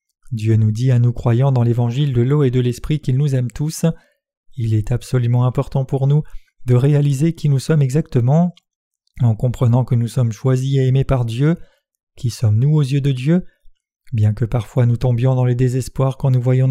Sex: male